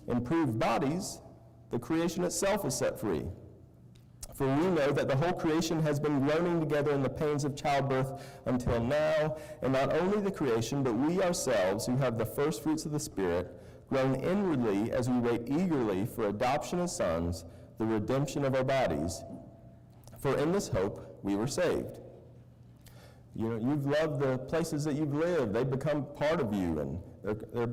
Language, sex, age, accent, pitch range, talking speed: English, male, 40-59, American, 115-150 Hz, 175 wpm